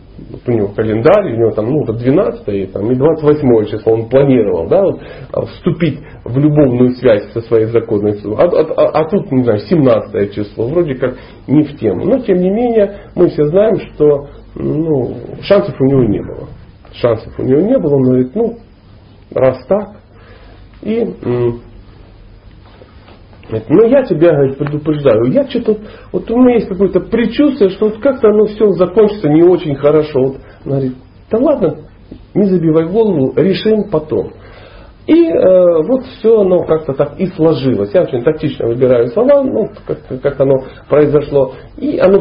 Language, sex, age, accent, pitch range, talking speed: Russian, male, 40-59, native, 125-190 Hz, 165 wpm